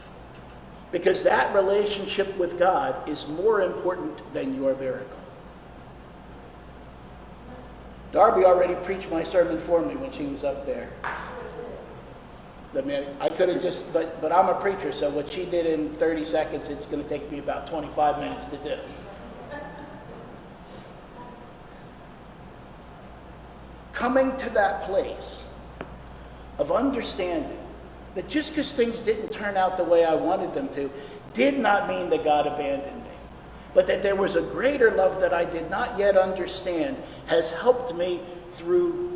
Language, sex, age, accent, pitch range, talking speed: English, male, 50-69, American, 160-260 Hz, 140 wpm